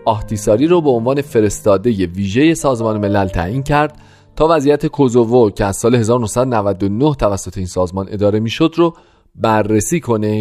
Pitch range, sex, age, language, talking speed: 100-150 Hz, male, 40-59, Persian, 150 wpm